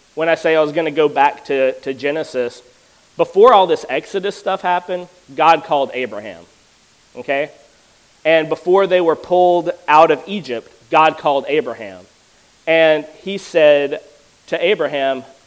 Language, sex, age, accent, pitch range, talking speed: English, male, 30-49, American, 140-180 Hz, 145 wpm